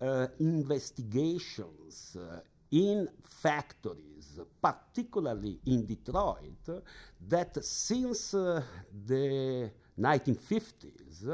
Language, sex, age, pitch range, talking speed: English, male, 60-79, 125-175 Hz, 75 wpm